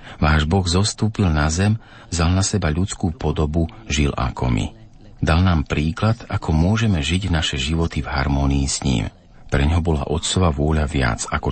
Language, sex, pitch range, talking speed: Slovak, male, 70-90 Hz, 165 wpm